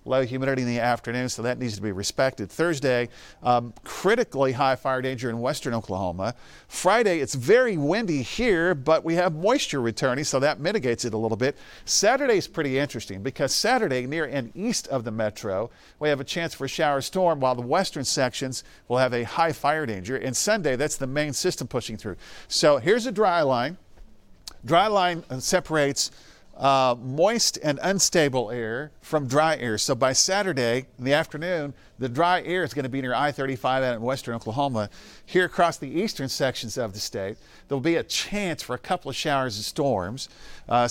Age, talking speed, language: 50-69, 190 wpm, English